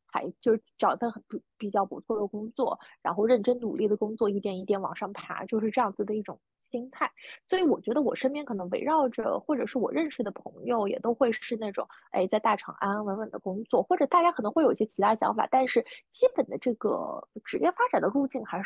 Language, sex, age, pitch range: Chinese, female, 20-39, 205-270 Hz